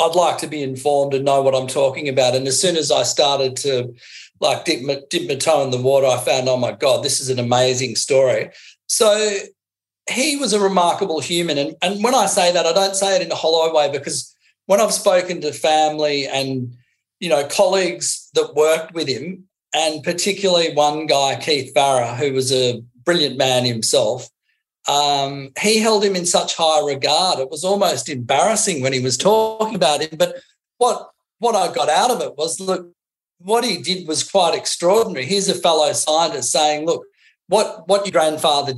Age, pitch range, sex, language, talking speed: 40-59, 135-185 Hz, male, English, 195 wpm